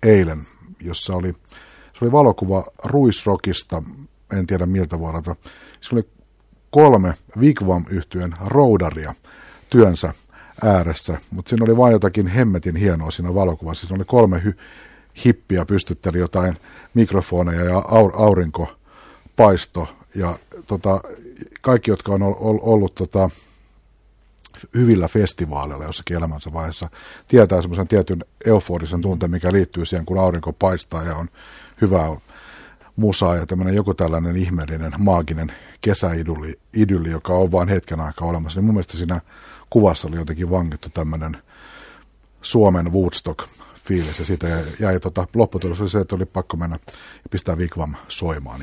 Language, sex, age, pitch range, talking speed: Finnish, male, 60-79, 85-100 Hz, 135 wpm